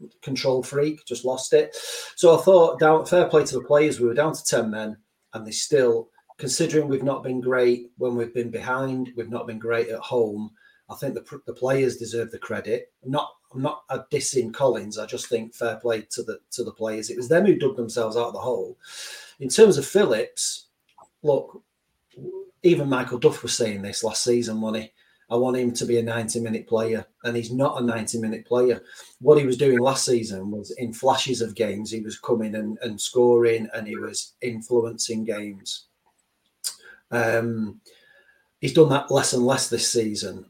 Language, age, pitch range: English, 30-49, 115-150 Hz